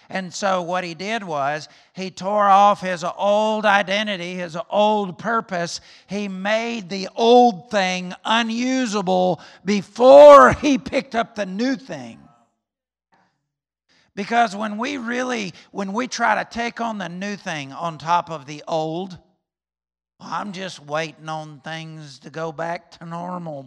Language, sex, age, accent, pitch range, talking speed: English, male, 50-69, American, 160-225 Hz, 140 wpm